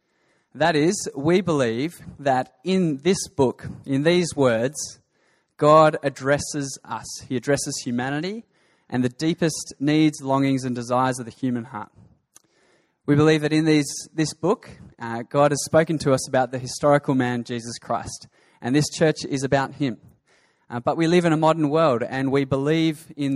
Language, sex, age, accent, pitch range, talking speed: English, male, 20-39, Australian, 130-155 Hz, 165 wpm